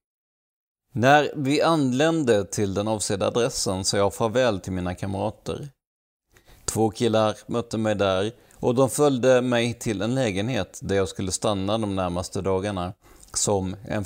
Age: 30-49